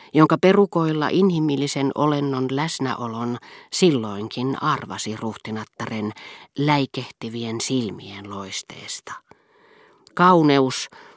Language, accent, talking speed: Finnish, native, 65 wpm